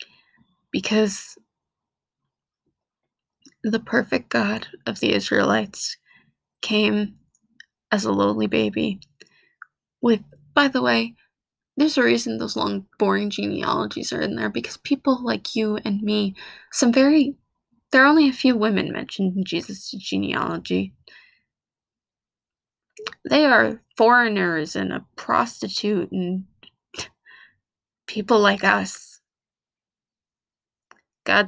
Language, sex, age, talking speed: English, female, 20-39, 105 wpm